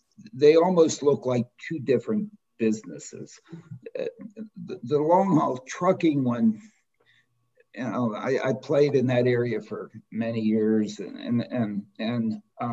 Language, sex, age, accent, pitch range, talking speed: English, male, 60-79, American, 125-195 Hz, 130 wpm